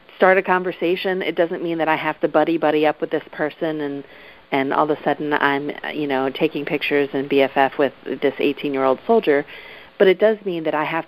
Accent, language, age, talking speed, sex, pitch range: American, English, 40-59, 210 wpm, female, 140-170 Hz